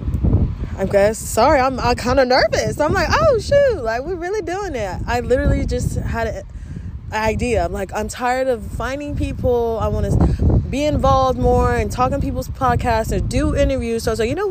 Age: 20-39